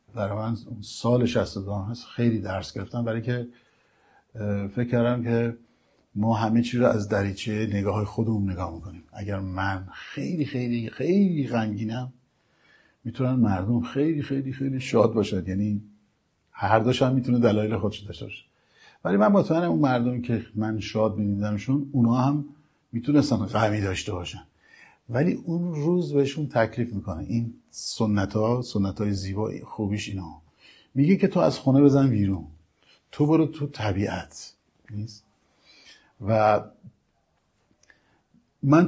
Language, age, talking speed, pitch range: Persian, 50-69, 135 wpm, 105-130 Hz